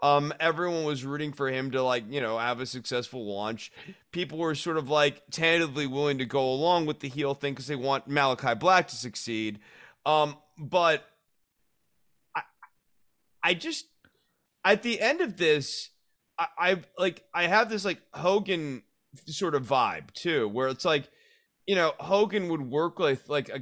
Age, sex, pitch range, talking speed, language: 30-49, male, 125-160 Hz, 175 wpm, English